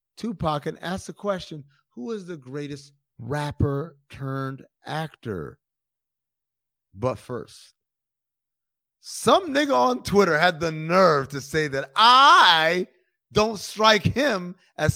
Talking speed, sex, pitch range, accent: 115 wpm, male, 105-140 Hz, American